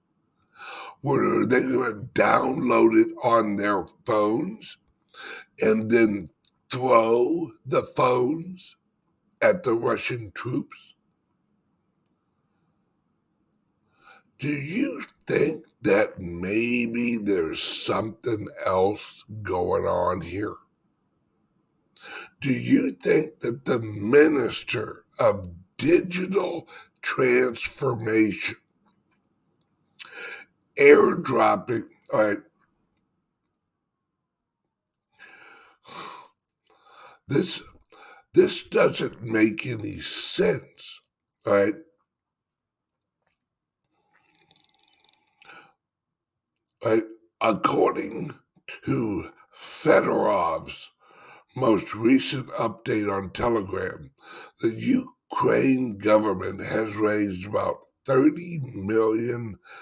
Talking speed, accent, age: 65 wpm, American, 60-79